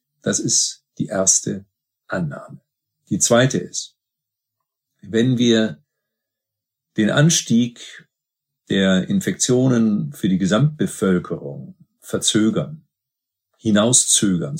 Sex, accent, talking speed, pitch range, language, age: male, German, 80 wpm, 105-150 Hz, German, 50-69